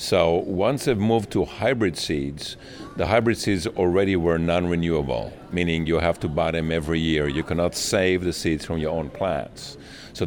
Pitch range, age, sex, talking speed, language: 80-100 Hz, 50-69, male, 180 wpm, English